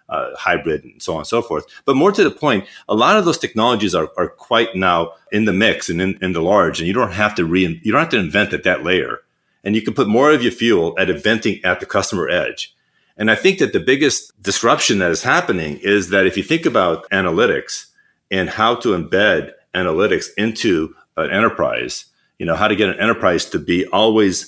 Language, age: English, 40-59